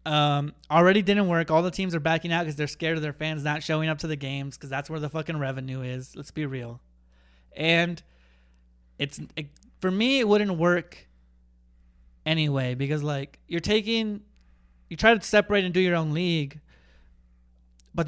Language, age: English, 20-39